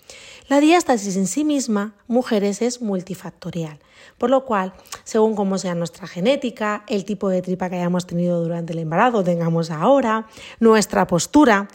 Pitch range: 195-270 Hz